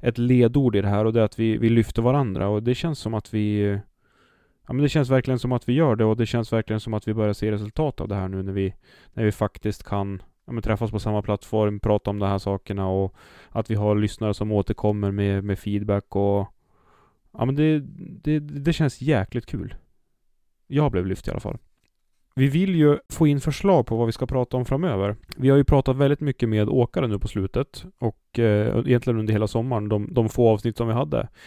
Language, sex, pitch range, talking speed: Swedish, male, 105-130 Hz, 230 wpm